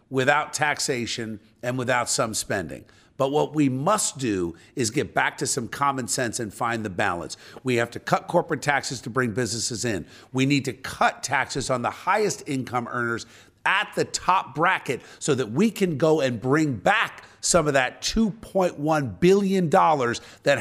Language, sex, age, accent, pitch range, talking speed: English, male, 50-69, American, 115-155 Hz, 175 wpm